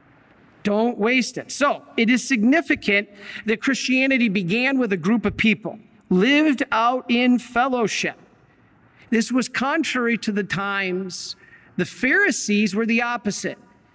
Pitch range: 180-245 Hz